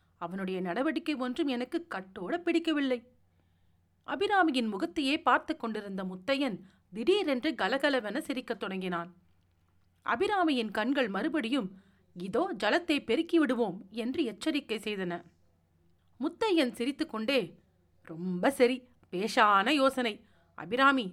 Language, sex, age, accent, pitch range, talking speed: Tamil, female, 40-59, native, 190-310 Hz, 90 wpm